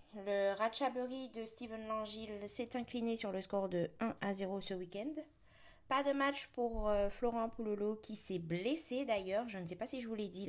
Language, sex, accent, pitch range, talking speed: French, female, French, 165-220 Hz, 205 wpm